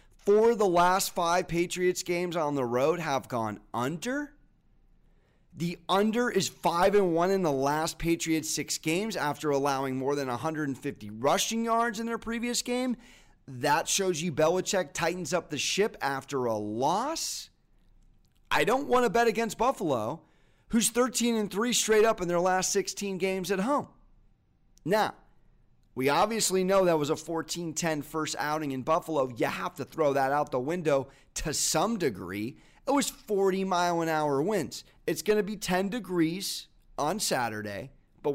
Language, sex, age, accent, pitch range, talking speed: English, male, 30-49, American, 140-195 Hz, 155 wpm